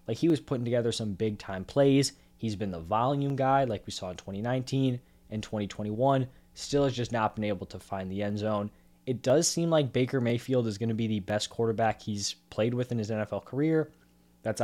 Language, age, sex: English, 20-39, male